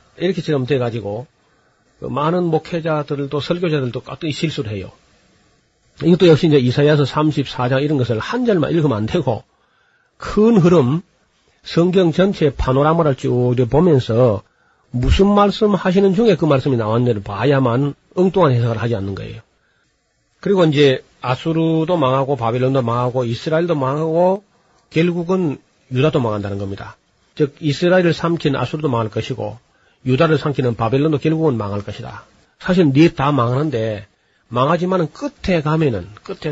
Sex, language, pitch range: male, Korean, 120-165 Hz